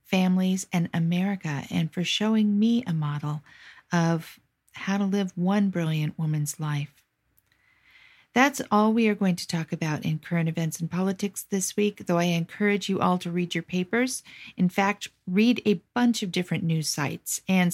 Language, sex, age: English, female, 50-69